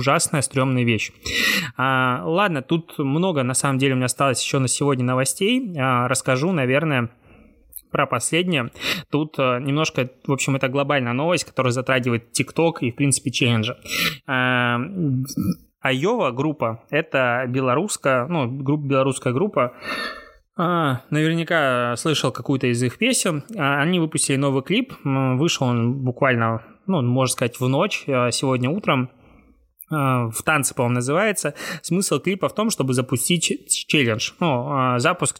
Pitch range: 125-155 Hz